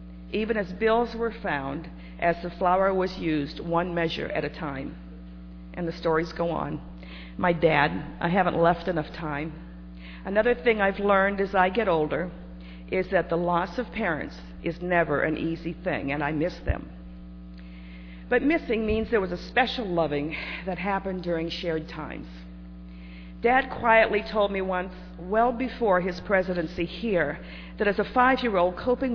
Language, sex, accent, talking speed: English, female, American, 160 wpm